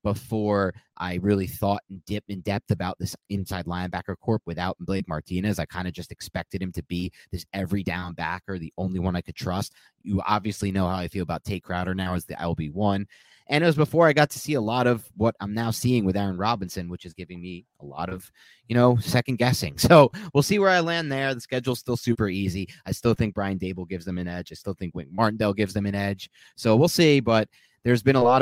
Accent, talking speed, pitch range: American, 245 wpm, 90-120 Hz